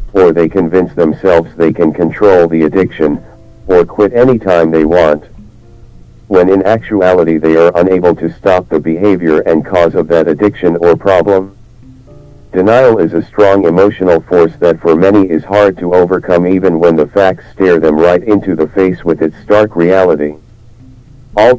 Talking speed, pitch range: 165 wpm, 80-105 Hz